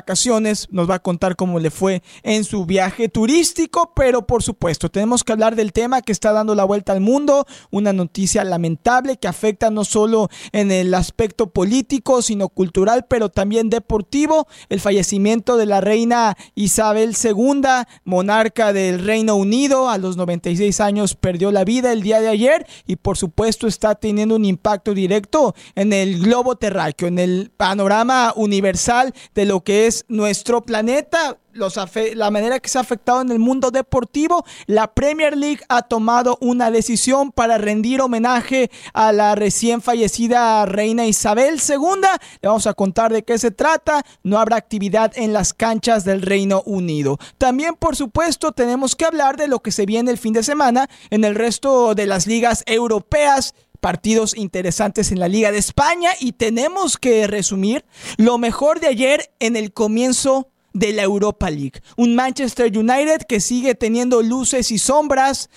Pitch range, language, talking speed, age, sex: 205-255 Hz, Spanish, 165 wpm, 40-59, male